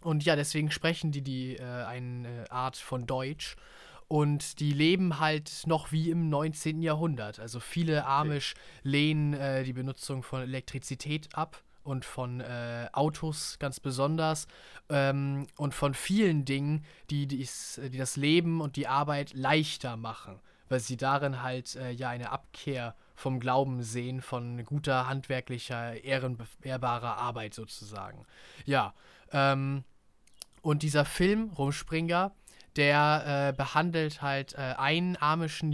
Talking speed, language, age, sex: 135 wpm, German, 20-39, male